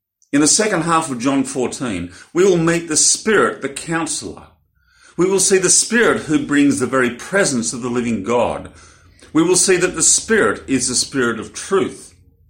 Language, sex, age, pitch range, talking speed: English, male, 50-69, 100-165 Hz, 185 wpm